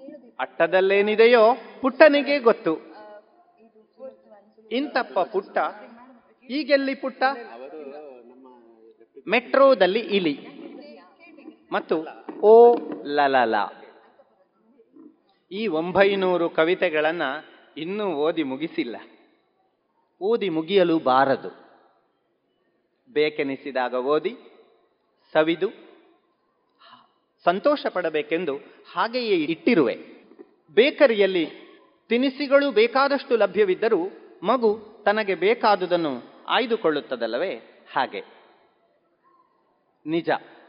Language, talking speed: Kannada, 55 wpm